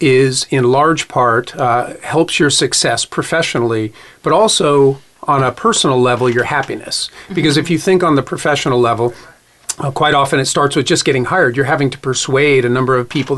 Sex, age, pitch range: male, 40-59, 125-140 Hz